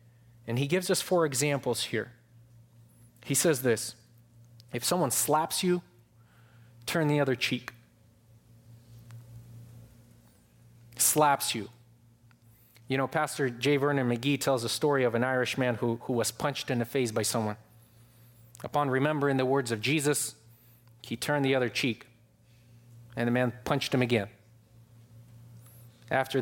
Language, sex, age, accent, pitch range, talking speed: English, male, 30-49, Canadian, 115-130 Hz, 135 wpm